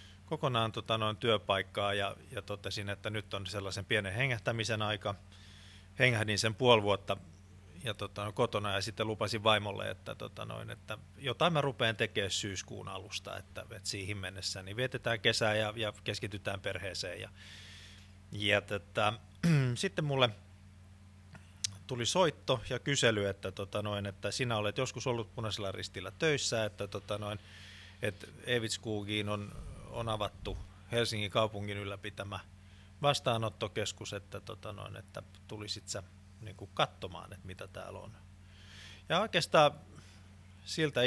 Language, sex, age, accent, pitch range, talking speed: Finnish, male, 30-49, native, 95-115 Hz, 135 wpm